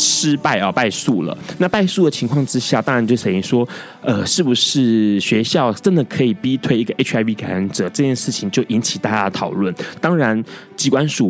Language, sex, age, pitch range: Chinese, male, 20-39, 115-160 Hz